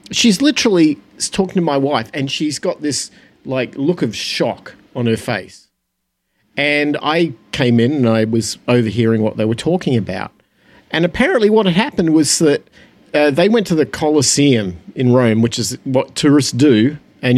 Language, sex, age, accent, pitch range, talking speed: English, male, 50-69, Australian, 120-185 Hz, 175 wpm